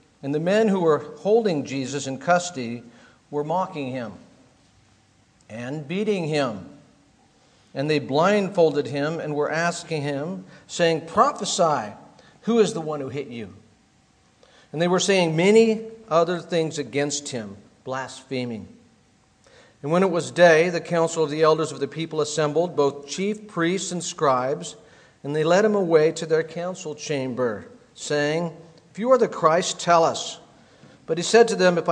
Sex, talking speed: male, 160 wpm